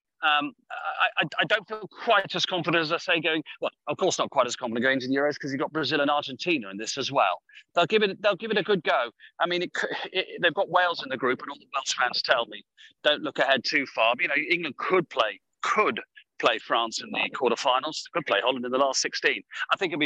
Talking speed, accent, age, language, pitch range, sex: 255 wpm, British, 40-59, English, 140-210 Hz, male